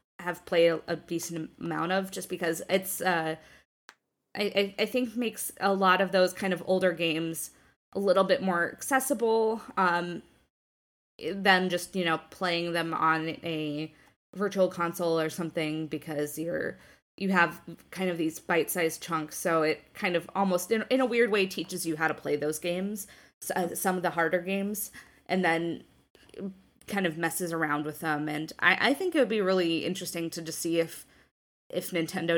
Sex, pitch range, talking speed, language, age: female, 160-190 Hz, 175 wpm, English, 20-39